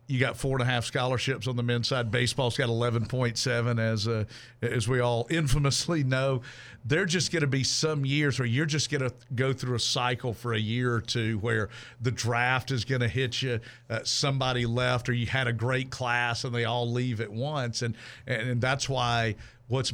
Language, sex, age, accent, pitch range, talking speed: English, male, 50-69, American, 120-140 Hz, 220 wpm